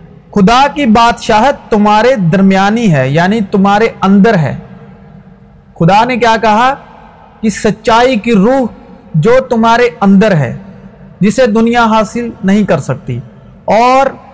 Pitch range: 175-235 Hz